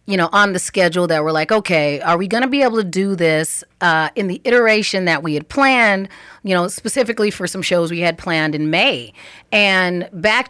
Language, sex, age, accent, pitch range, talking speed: English, female, 30-49, American, 165-210 Hz, 225 wpm